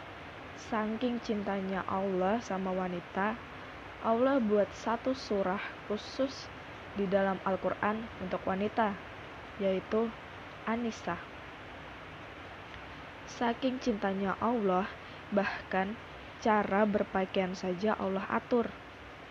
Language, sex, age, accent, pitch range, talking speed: Indonesian, female, 20-39, native, 190-215 Hz, 80 wpm